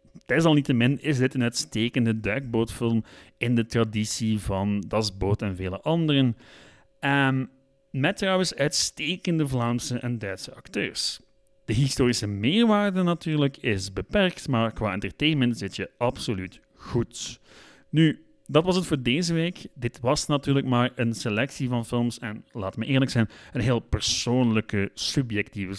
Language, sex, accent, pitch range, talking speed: Dutch, male, Dutch, 110-150 Hz, 140 wpm